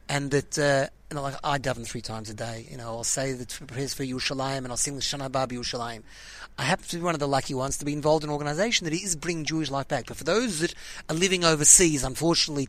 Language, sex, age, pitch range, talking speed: English, male, 30-49, 150-235 Hz, 265 wpm